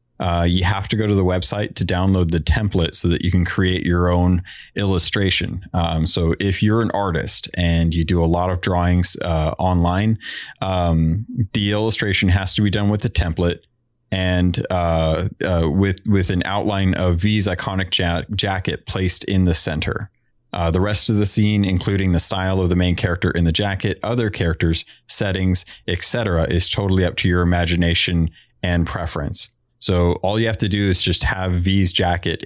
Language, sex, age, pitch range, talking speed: English, male, 30-49, 85-100 Hz, 185 wpm